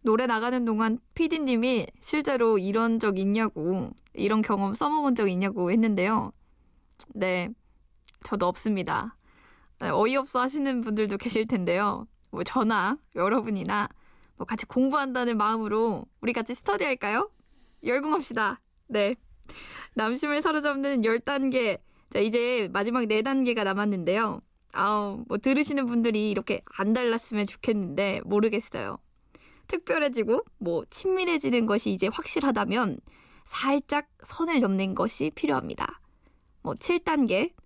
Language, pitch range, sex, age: Korean, 205-255 Hz, female, 20-39